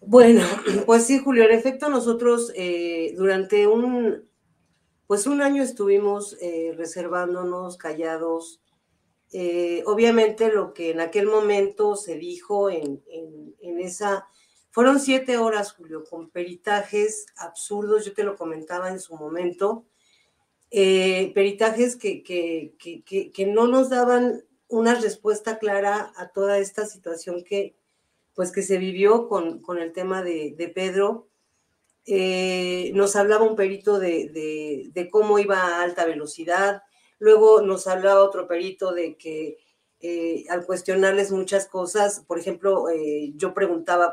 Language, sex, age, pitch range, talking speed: Spanish, female, 40-59, 175-215 Hz, 140 wpm